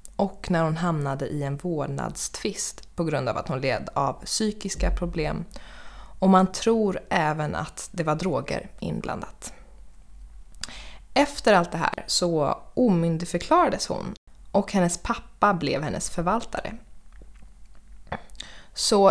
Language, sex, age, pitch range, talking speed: Swedish, female, 20-39, 155-205 Hz, 120 wpm